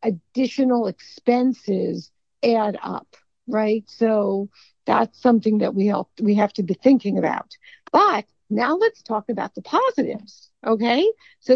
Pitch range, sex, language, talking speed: 210-250 Hz, female, English, 135 wpm